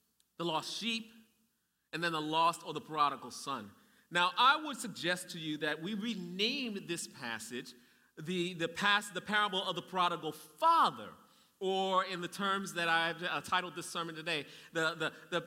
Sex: male